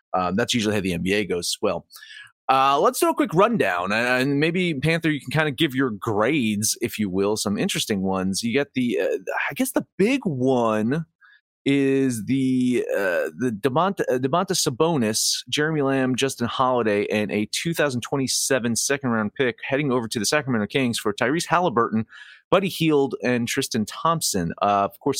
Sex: male